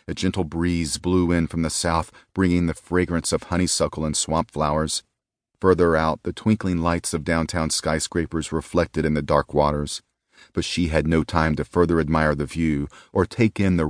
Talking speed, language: 185 wpm, English